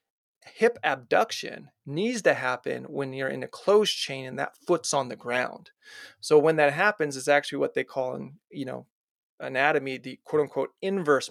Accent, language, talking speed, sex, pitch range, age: American, English, 175 wpm, male, 140-205 Hz, 30-49